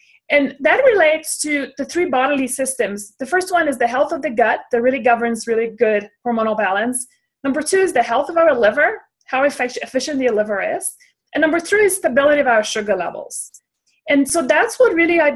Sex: female